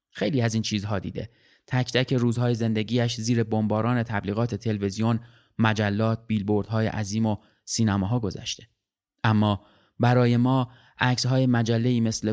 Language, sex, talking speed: Persian, male, 120 wpm